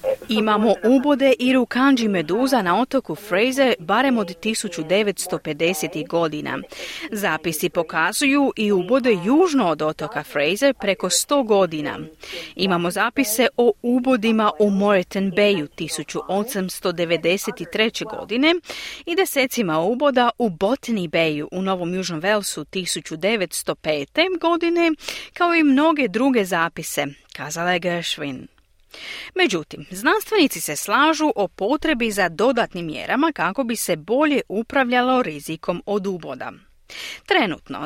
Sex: female